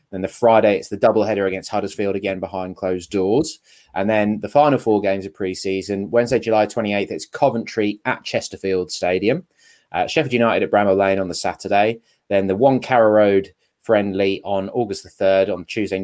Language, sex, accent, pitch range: English, male, British, 95-110 Hz